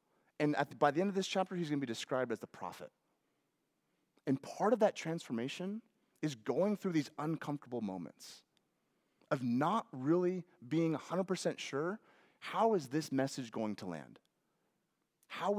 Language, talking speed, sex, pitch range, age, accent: English, 160 wpm, male, 125-175 Hz, 30-49, American